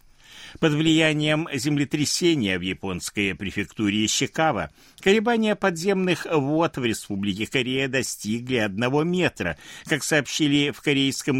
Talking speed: 105 wpm